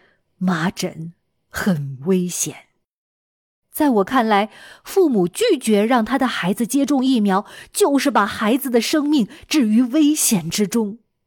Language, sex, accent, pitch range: Chinese, female, native, 195-285 Hz